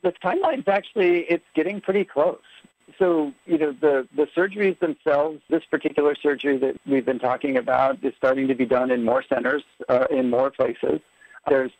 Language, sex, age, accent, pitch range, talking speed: English, male, 60-79, American, 120-145 Hz, 185 wpm